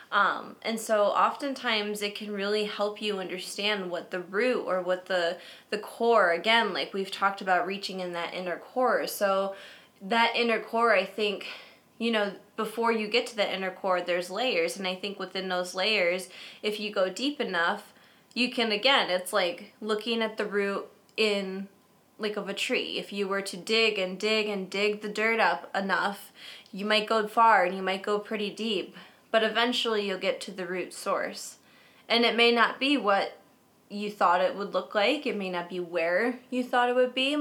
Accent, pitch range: American, 190-235 Hz